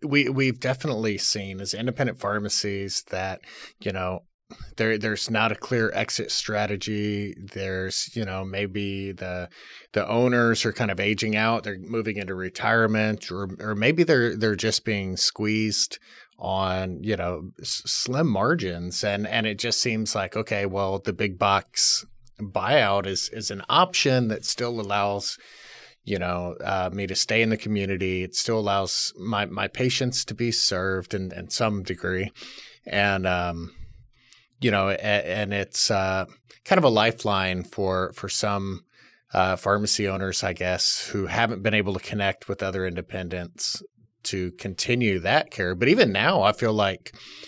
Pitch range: 95-110 Hz